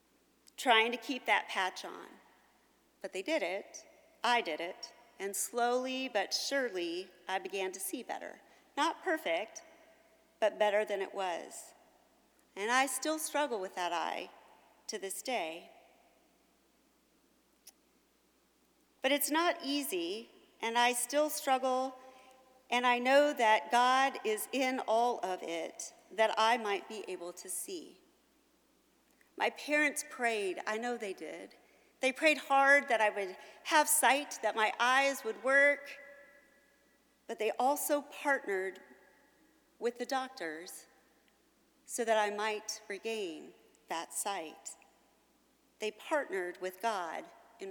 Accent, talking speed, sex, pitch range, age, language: American, 130 wpm, female, 215-290 Hz, 40-59, English